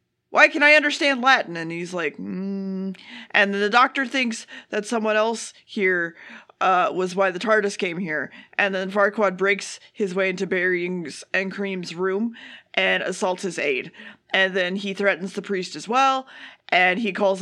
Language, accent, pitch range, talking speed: English, American, 190-245 Hz, 175 wpm